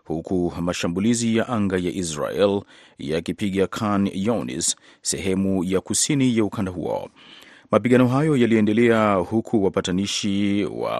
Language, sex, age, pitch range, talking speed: Swahili, male, 30-49, 90-110 Hz, 115 wpm